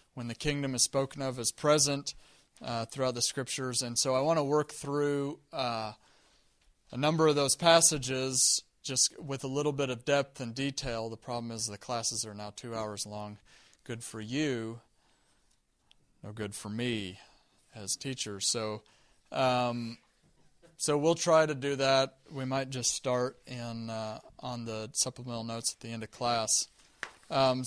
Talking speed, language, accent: 165 wpm, English, American